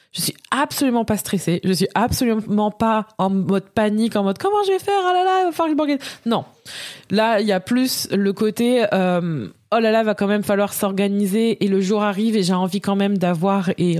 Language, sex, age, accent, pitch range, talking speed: French, female, 20-39, French, 185-225 Hz, 225 wpm